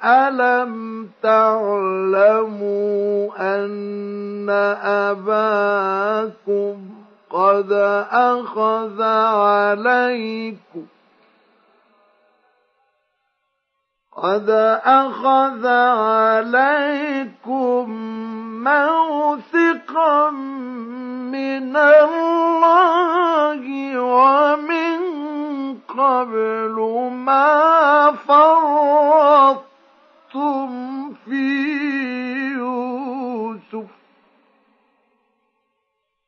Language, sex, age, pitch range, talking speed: Arabic, male, 50-69, 225-295 Hz, 30 wpm